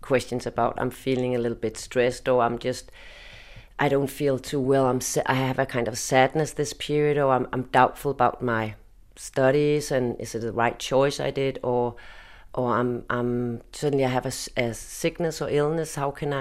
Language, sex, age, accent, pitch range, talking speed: English, female, 30-49, Danish, 125-150 Hz, 200 wpm